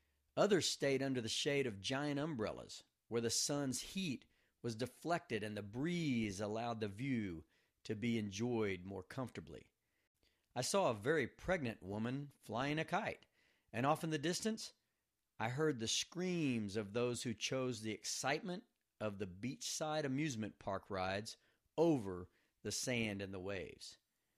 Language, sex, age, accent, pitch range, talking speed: English, male, 40-59, American, 105-145 Hz, 150 wpm